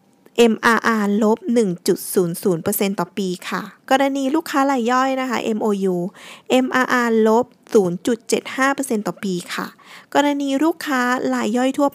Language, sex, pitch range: Thai, female, 195-255 Hz